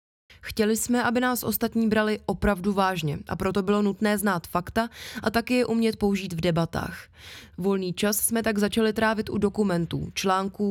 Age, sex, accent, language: 20-39, female, native, Czech